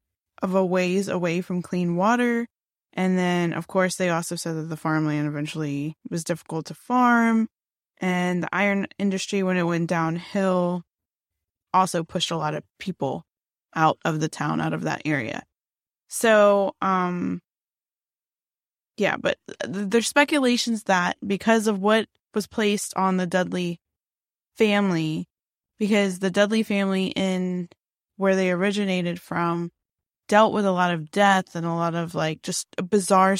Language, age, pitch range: English, 20-39, 170-205 Hz